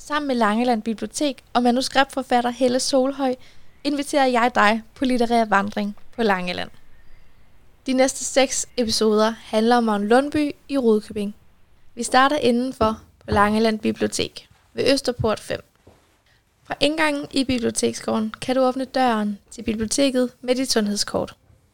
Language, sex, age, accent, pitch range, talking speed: Danish, female, 10-29, native, 215-260 Hz, 135 wpm